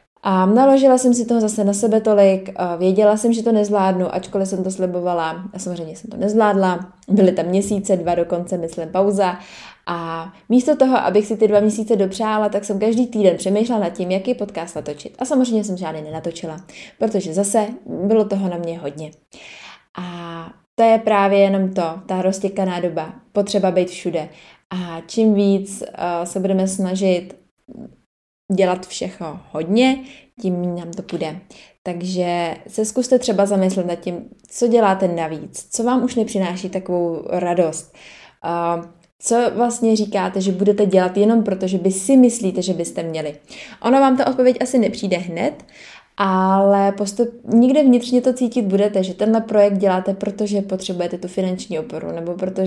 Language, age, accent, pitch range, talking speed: Czech, 20-39, native, 175-215 Hz, 165 wpm